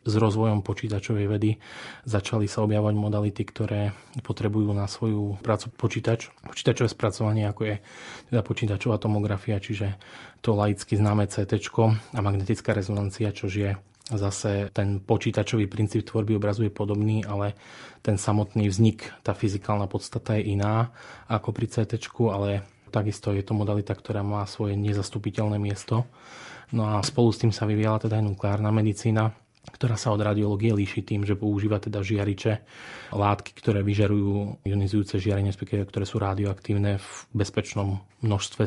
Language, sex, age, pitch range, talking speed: Slovak, male, 20-39, 100-110 Hz, 145 wpm